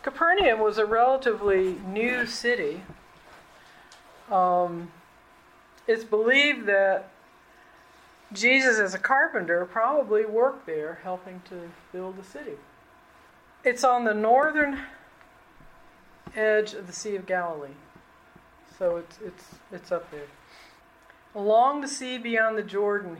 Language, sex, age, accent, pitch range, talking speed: English, female, 50-69, American, 180-230 Hz, 115 wpm